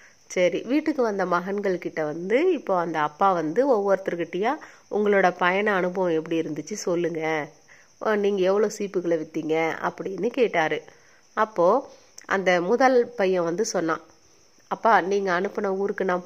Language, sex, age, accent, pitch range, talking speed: Tamil, female, 30-49, native, 175-230 Hz, 125 wpm